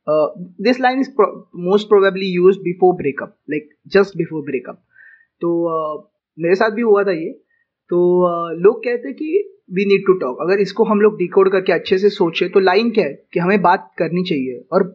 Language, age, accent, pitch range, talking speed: Hindi, 20-39, native, 180-220 Hz, 195 wpm